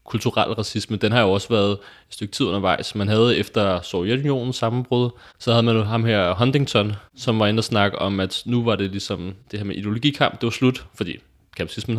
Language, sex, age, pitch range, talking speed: Danish, male, 20-39, 105-125 Hz, 210 wpm